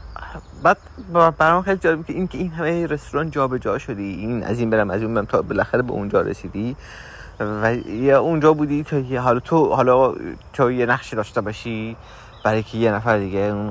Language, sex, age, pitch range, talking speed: Persian, male, 30-49, 95-125 Hz, 190 wpm